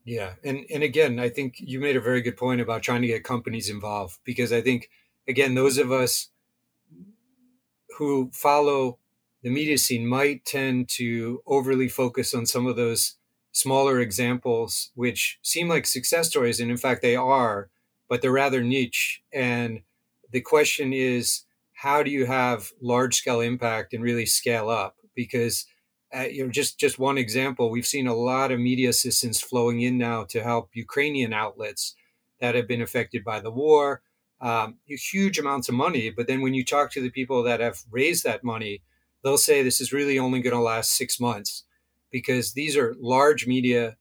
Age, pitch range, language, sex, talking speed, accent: 30-49, 120-135 Hz, Polish, male, 180 wpm, American